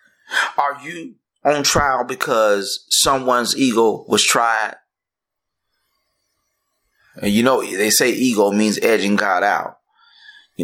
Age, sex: 30-49, male